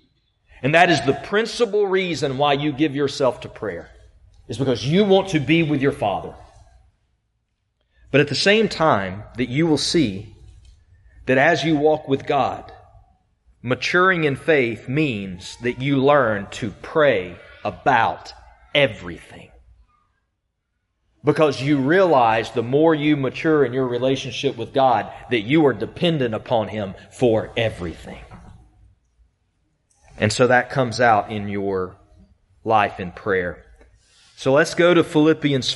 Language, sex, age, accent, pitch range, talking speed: English, male, 40-59, American, 100-145 Hz, 140 wpm